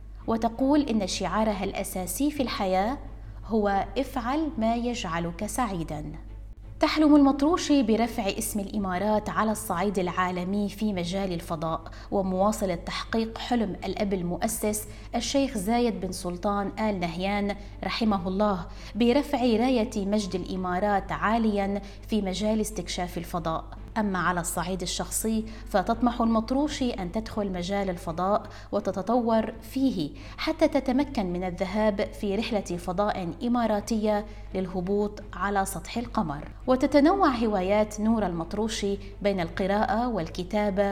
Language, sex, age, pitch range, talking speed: Arabic, female, 20-39, 185-225 Hz, 110 wpm